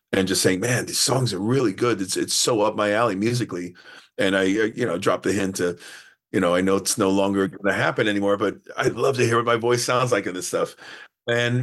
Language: English